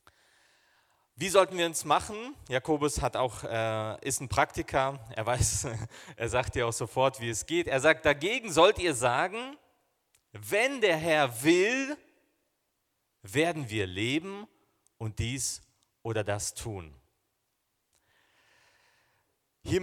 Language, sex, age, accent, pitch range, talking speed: German, male, 40-59, German, 115-170 Hz, 125 wpm